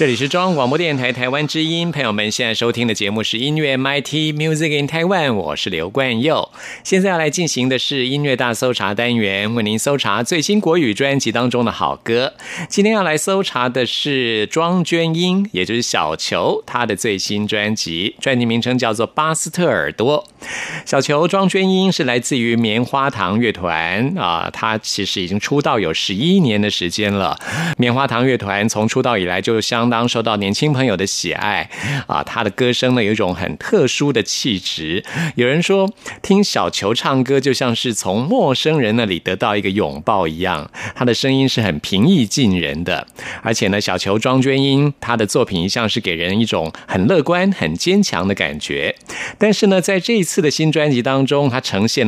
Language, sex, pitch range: Chinese, male, 110-155 Hz